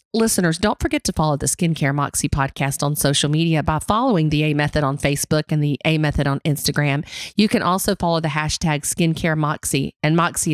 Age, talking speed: 40-59, 200 wpm